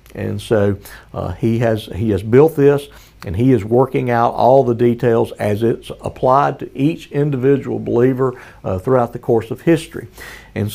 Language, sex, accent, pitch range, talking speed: English, male, American, 115-145 Hz, 175 wpm